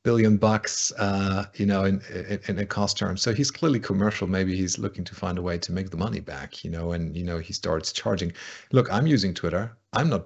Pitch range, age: 90-110 Hz, 40-59